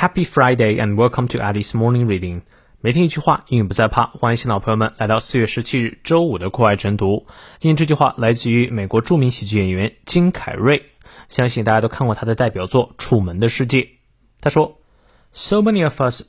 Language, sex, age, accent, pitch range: Chinese, male, 20-39, native, 115-155 Hz